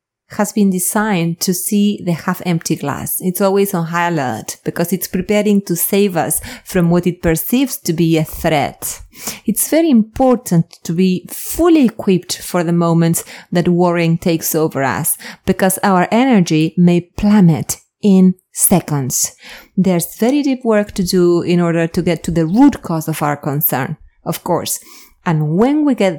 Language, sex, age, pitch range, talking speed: English, female, 30-49, 165-205 Hz, 165 wpm